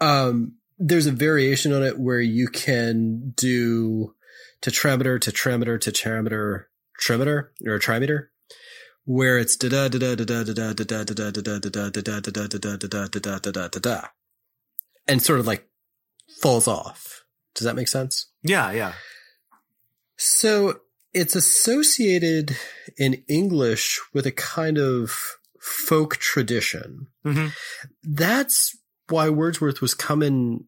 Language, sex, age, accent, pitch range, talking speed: English, male, 30-49, American, 110-140 Hz, 95 wpm